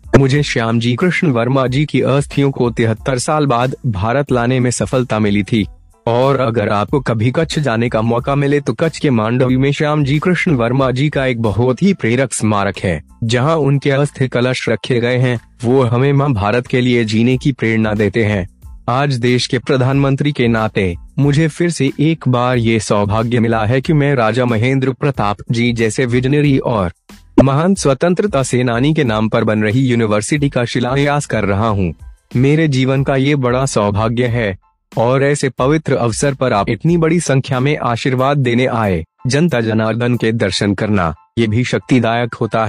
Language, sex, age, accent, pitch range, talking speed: Hindi, male, 20-39, native, 110-140 Hz, 180 wpm